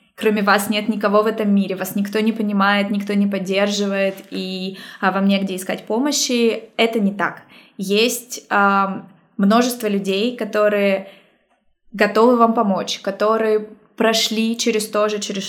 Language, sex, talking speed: Russian, female, 135 wpm